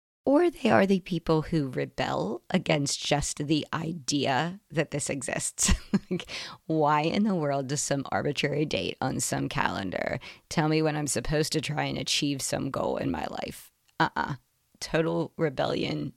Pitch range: 145-175 Hz